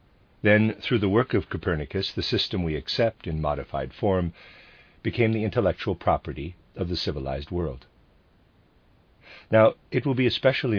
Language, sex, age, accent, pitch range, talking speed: English, male, 50-69, American, 85-110 Hz, 145 wpm